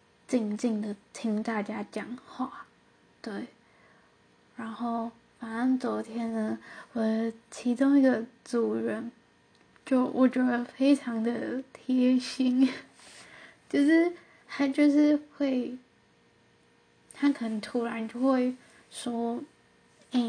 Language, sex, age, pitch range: Chinese, female, 10-29, 225-255 Hz